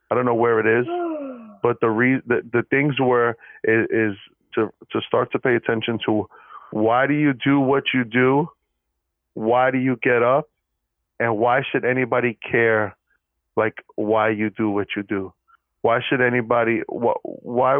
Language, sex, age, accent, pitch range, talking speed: English, male, 30-49, American, 105-125 Hz, 170 wpm